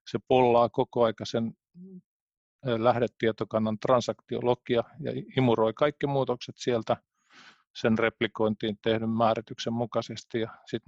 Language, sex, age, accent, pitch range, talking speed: Finnish, male, 40-59, native, 110-120 Hz, 95 wpm